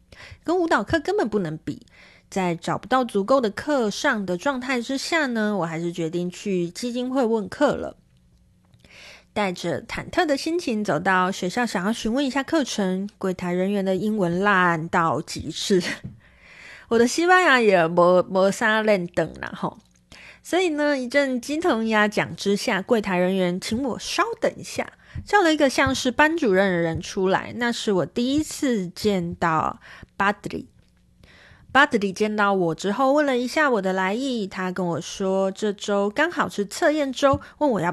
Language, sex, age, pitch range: Chinese, female, 20-39, 185-265 Hz